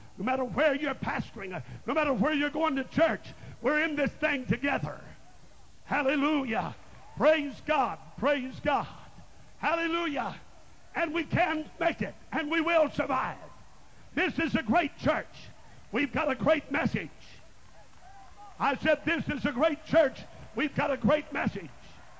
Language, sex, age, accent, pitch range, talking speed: English, male, 50-69, American, 255-300 Hz, 145 wpm